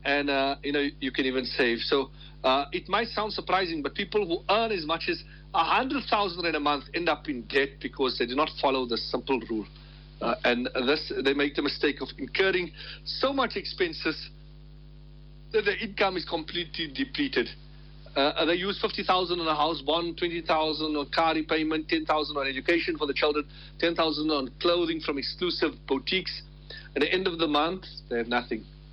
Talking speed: 195 wpm